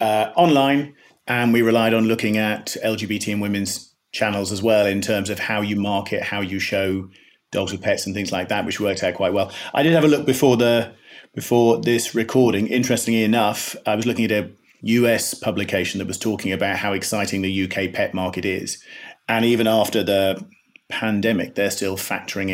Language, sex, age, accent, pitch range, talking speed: English, male, 40-59, British, 95-115 Hz, 190 wpm